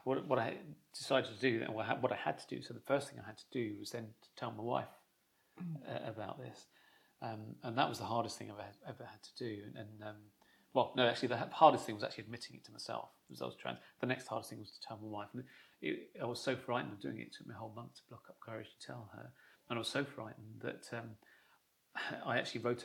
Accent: British